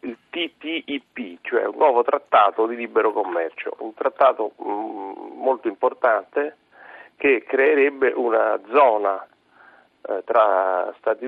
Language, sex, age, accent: Italian, male, 40-59, native